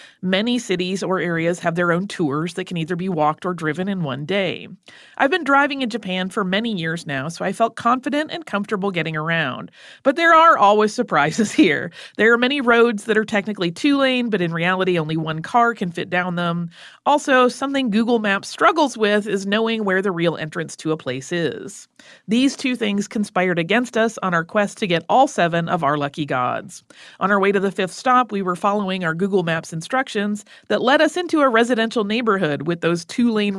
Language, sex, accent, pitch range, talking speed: English, female, American, 175-235 Hz, 205 wpm